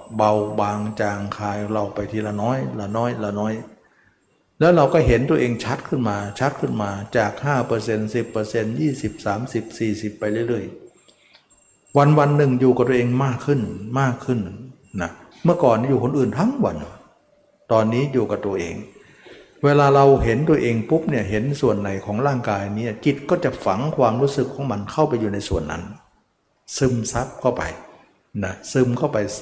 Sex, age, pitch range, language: male, 60-79, 105-135 Hz, Thai